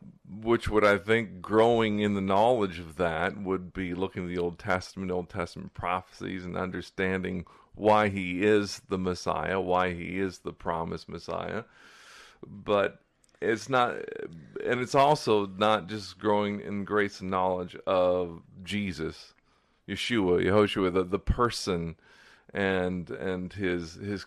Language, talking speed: English, 140 wpm